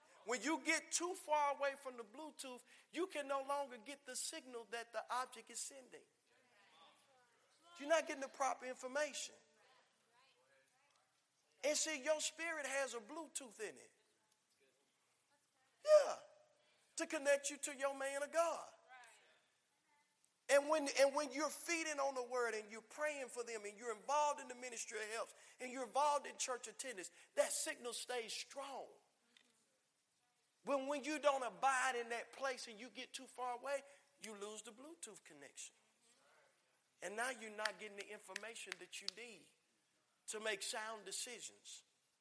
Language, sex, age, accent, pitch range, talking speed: English, male, 50-69, American, 235-300 Hz, 155 wpm